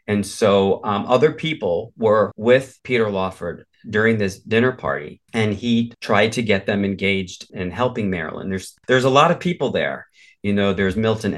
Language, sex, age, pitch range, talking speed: English, male, 40-59, 95-115 Hz, 180 wpm